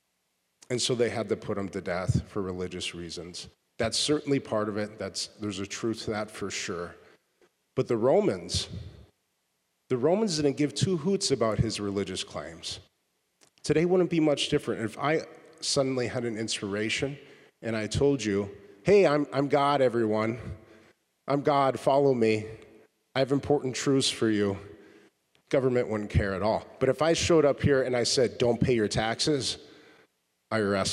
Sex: male